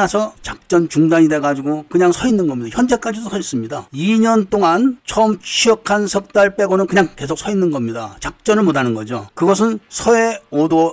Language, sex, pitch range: Korean, male, 145-195 Hz